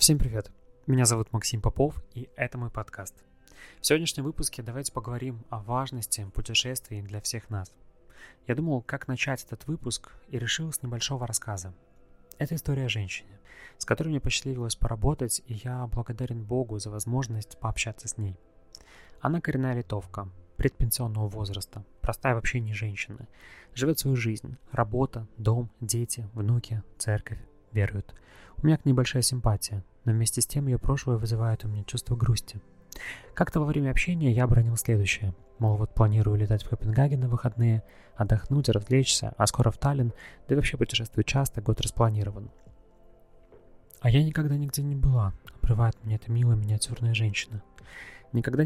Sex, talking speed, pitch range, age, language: male, 155 wpm, 105-130 Hz, 20-39, Russian